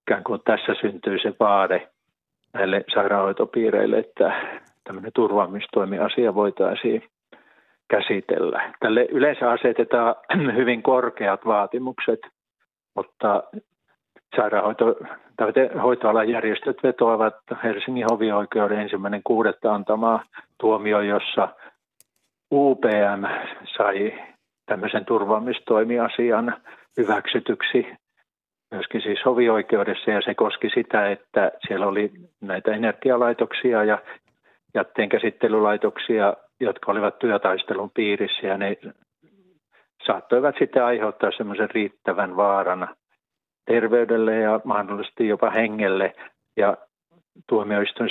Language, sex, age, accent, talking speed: Finnish, male, 50-69, native, 80 wpm